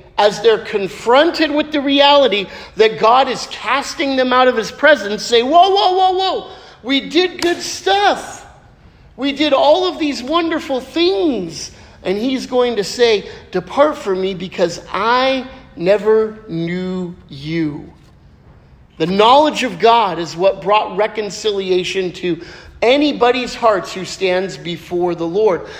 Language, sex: English, male